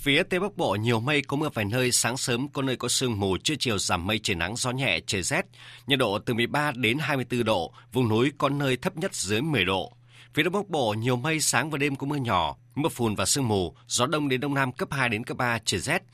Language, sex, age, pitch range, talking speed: Vietnamese, male, 30-49, 115-140 Hz, 280 wpm